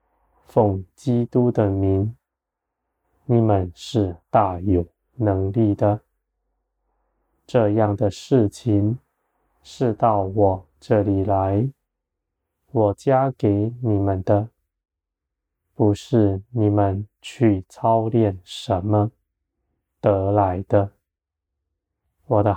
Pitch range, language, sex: 85-115 Hz, Chinese, male